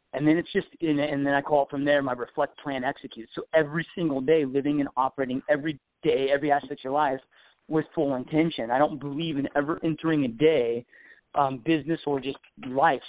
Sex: male